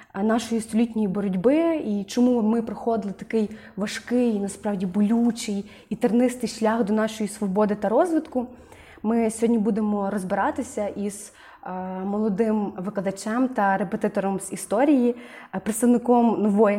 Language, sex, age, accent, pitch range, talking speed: Ukrainian, female, 20-39, native, 200-240 Hz, 115 wpm